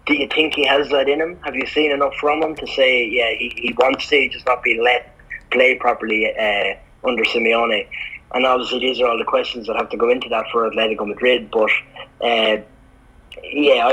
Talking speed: 210 wpm